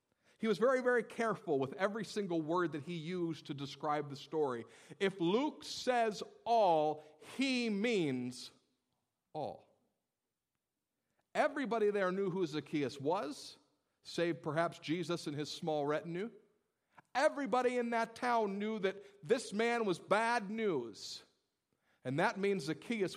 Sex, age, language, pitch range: male, 50-69, English, 150-215 Hz